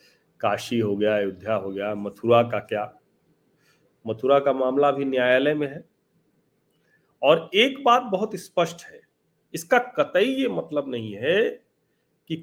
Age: 40-59